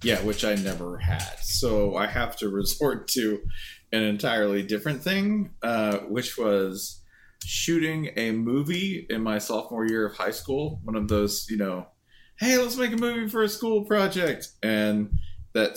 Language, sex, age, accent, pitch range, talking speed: English, male, 20-39, American, 100-140 Hz, 165 wpm